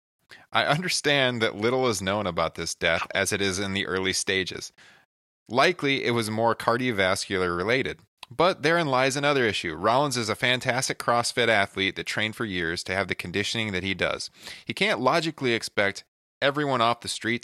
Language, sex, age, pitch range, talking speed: English, male, 30-49, 95-125 Hz, 175 wpm